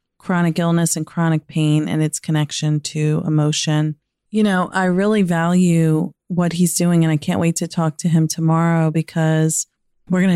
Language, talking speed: English, 175 wpm